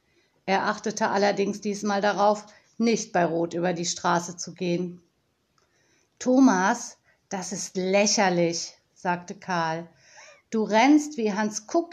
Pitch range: 180-250 Hz